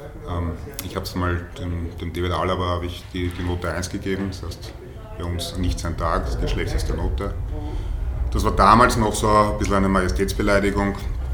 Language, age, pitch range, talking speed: German, 30-49, 90-95 Hz, 180 wpm